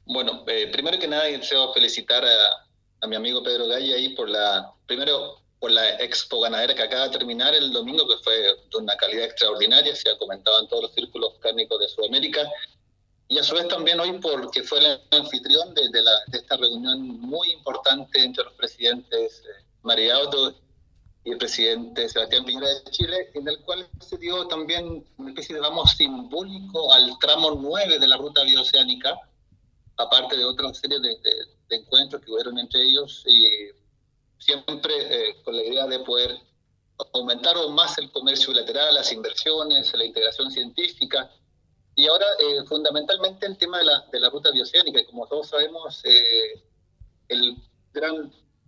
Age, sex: 30-49, male